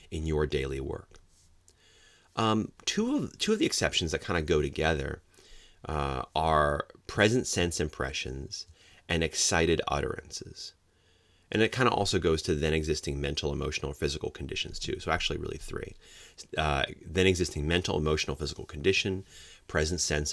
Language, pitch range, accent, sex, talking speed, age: English, 75-95 Hz, American, male, 150 wpm, 30-49